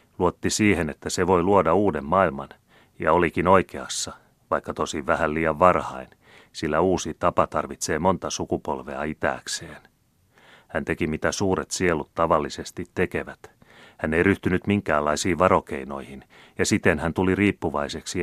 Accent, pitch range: native, 75-95 Hz